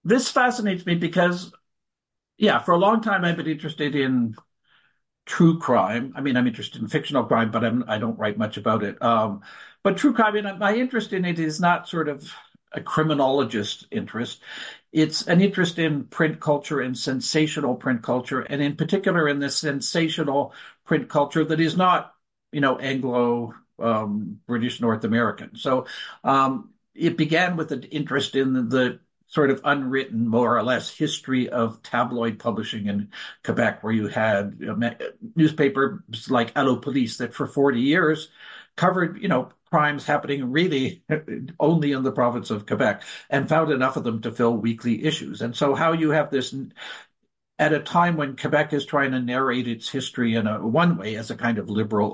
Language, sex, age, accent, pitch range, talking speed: English, male, 60-79, American, 120-160 Hz, 175 wpm